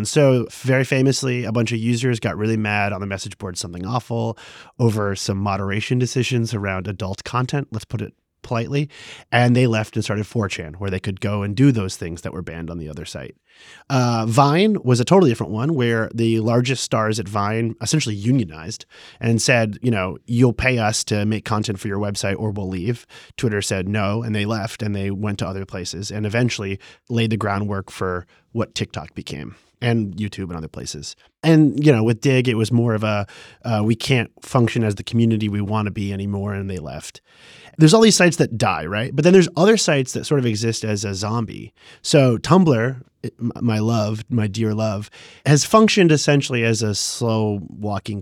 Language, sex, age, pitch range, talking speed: English, male, 30-49, 105-130 Hz, 205 wpm